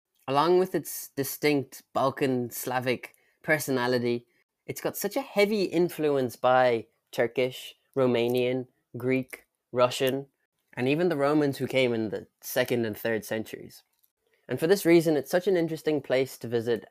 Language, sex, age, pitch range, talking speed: English, male, 10-29, 120-145 Hz, 145 wpm